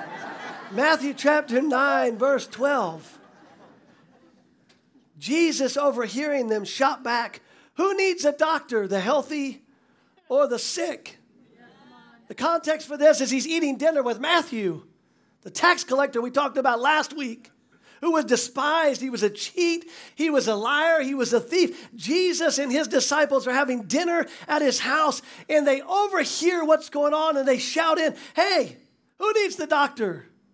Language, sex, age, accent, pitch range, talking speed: English, male, 40-59, American, 250-320 Hz, 150 wpm